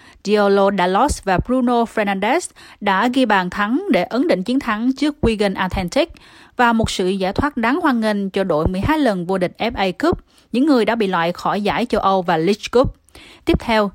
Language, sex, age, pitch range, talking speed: Vietnamese, female, 20-39, 190-240 Hz, 200 wpm